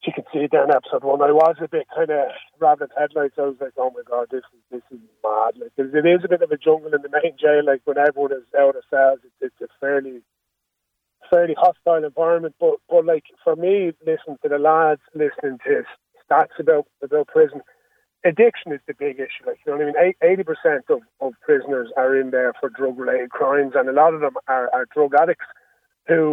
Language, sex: English, male